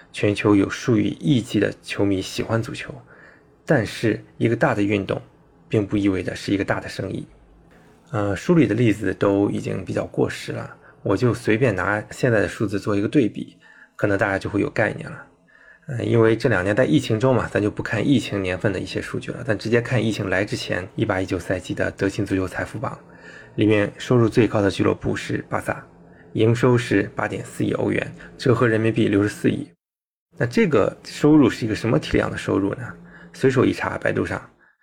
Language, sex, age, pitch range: Chinese, male, 20-39, 100-115 Hz